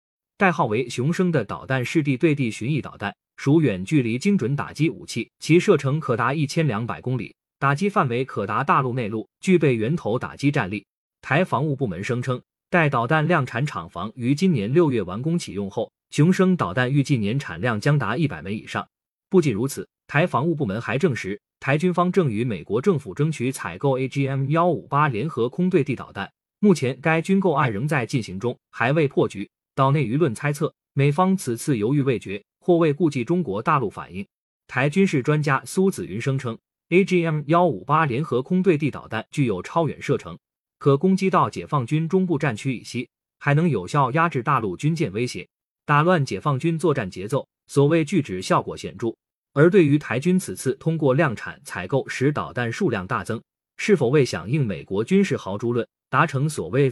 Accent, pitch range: native, 125-165 Hz